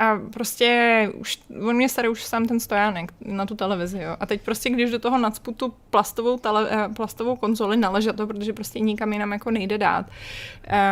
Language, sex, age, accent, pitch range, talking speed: Czech, female, 20-39, native, 210-245 Hz, 175 wpm